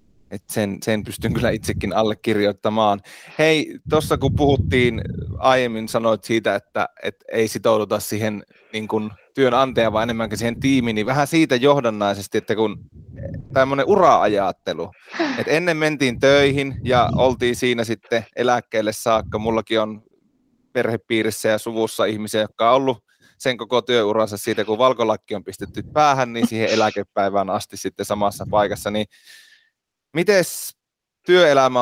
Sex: male